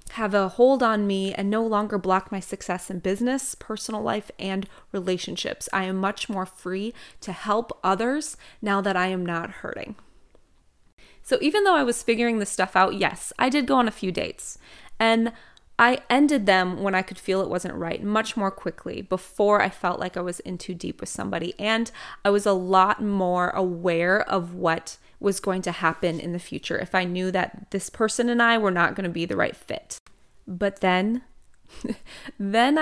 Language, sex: English, female